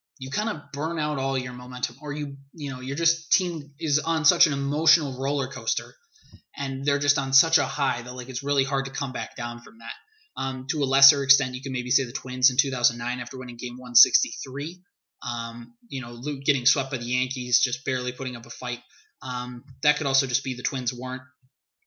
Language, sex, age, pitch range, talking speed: English, male, 20-39, 125-140 Hz, 220 wpm